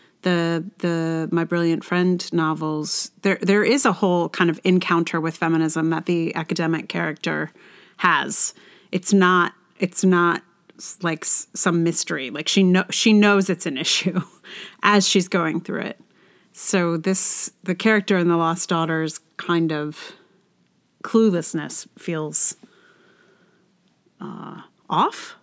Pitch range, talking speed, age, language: 170-200 Hz, 130 wpm, 30-49, English